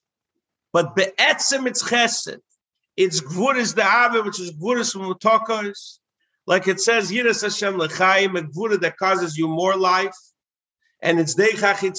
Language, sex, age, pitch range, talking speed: English, male, 50-69, 160-225 Hz, 145 wpm